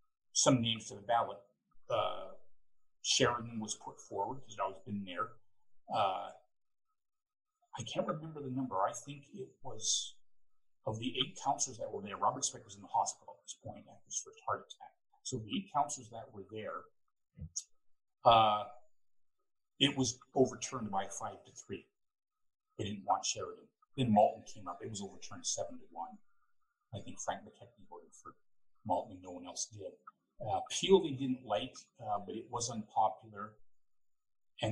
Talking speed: 170 wpm